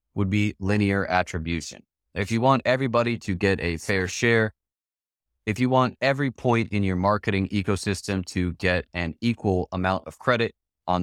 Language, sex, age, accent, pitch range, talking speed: English, male, 20-39, American, 90-110 Hz, 165 wpm